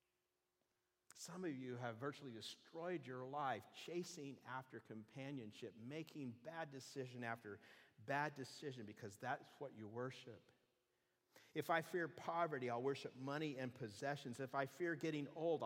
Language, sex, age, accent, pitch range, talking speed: English, male, 50-69, American, 125-160 Hz, 140 wpm